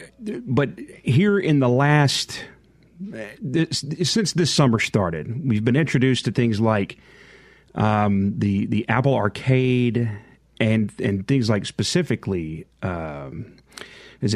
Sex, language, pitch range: male, English, 105-135 Hz